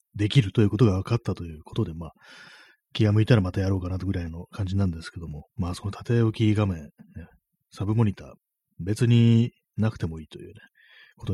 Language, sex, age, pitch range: Japanese, male, 30-49, 90-120 Hz